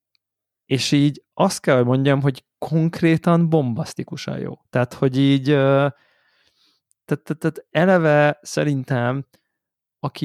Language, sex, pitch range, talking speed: Hungarian, male, 125-145 Hz, 90 wpm